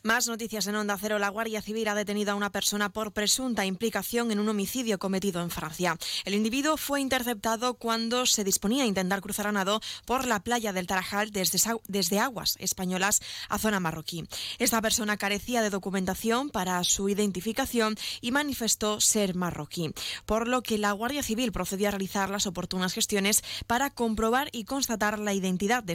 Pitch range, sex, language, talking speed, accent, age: 185-225 Hz, female, Spanish, 180 wpm, Spanish, 20-39